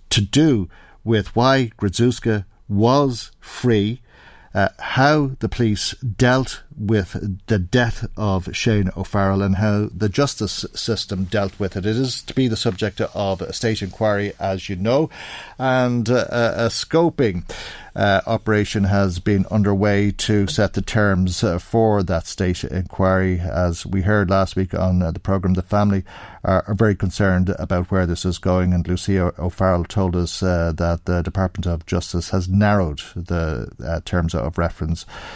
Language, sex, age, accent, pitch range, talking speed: English, male, 50-69, Irish, 90-105 Hz, 165 wpm